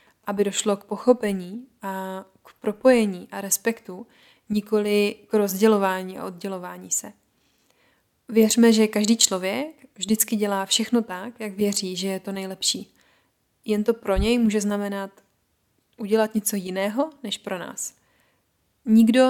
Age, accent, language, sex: 20-39, native, Czech, female